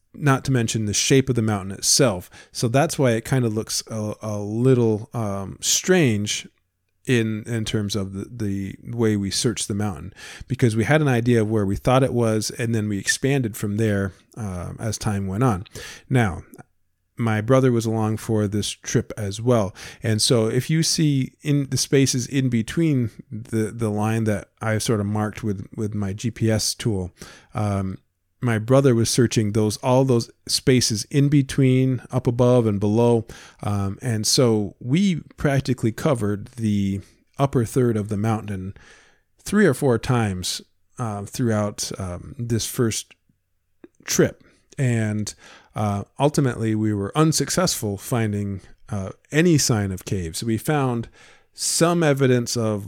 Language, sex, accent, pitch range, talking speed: English, male, American, 105-130 Hz, 160 wpm